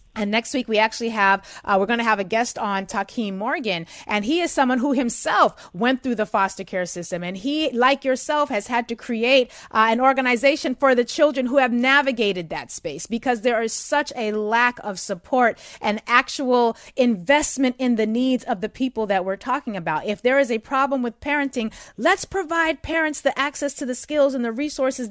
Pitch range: 200-275 Hz